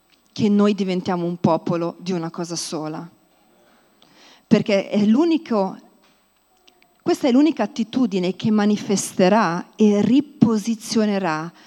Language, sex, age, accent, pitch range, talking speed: Italian, female, 40-59, native, 175-225 Hz, 105 wpm